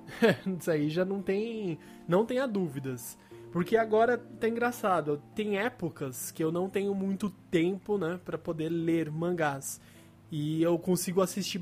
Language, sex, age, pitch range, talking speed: Portuguese, male, 20-39, 155-210 Hz, 145 wpm